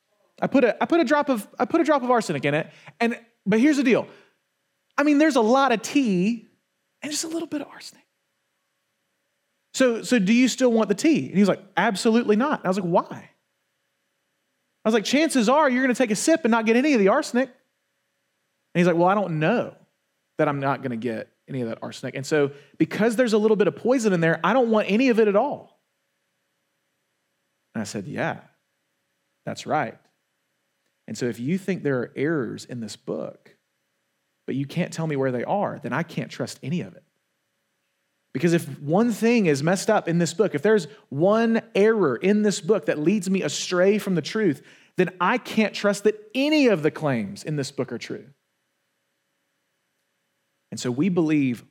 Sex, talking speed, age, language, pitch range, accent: male, 210 wpm, 30-49, English, 155-240 Hz, American